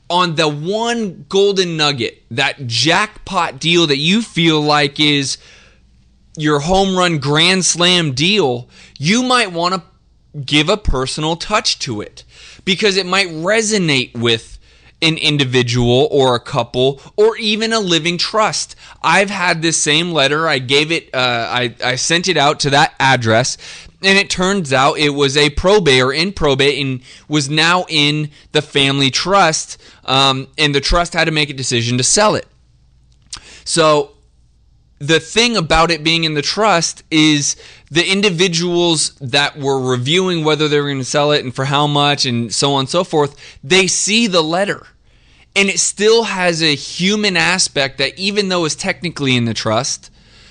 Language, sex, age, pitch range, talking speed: English, male, 20-39, 135-180 Hz, 170 wpm